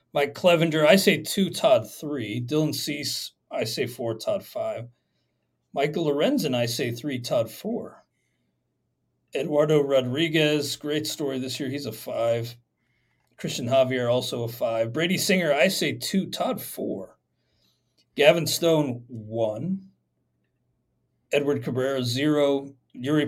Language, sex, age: English, male, 40-59